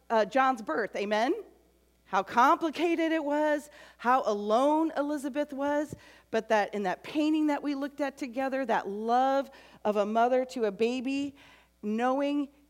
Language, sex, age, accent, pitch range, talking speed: English, female, 40-59, American, 200-280 Hz, 145 wpm